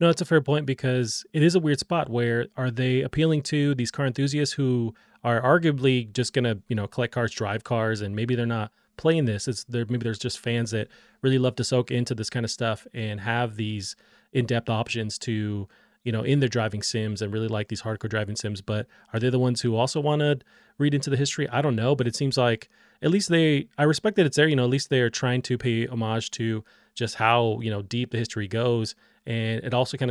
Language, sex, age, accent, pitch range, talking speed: English, male, 20-39, American, 110-135 Hz, 245 wpm